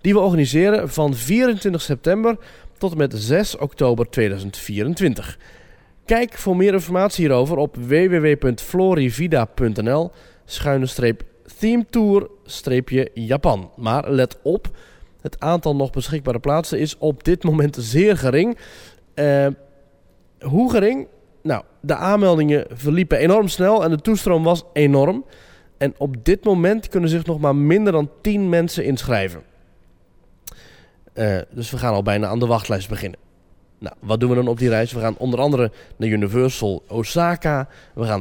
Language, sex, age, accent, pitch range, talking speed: Dutch, male, 20-39, Dutch, 115-170 Hz, 140 wpm